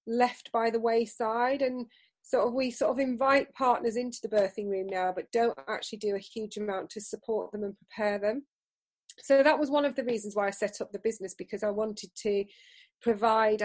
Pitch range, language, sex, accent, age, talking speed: 210-245 Hz, English, female, British, 30-49, 205 wpm